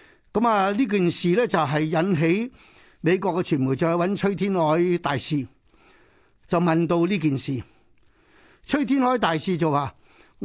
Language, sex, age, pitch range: Chinese, male, 60-79, 150-195 Hz